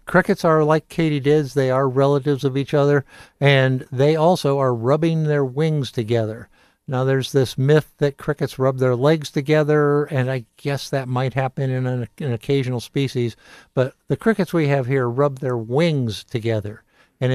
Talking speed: 175 wpm